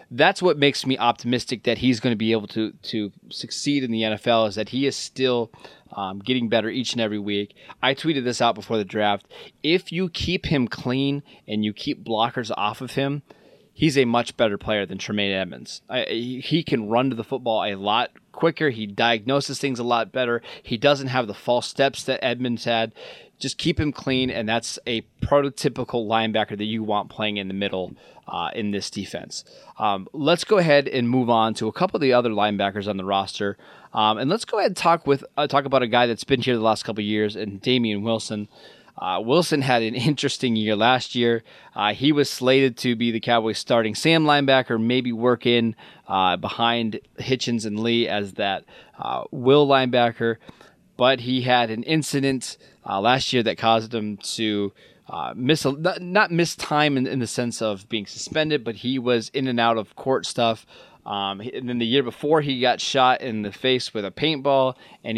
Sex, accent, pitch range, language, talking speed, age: male, American, 110-135 Hz, English, 205 wpm, 20-39